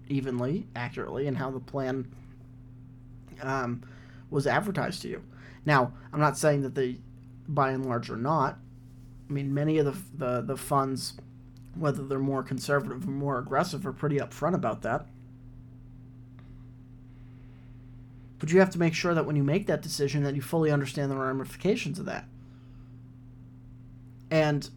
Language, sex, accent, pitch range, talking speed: English, male, American, 125-150 Hz, 155 wpm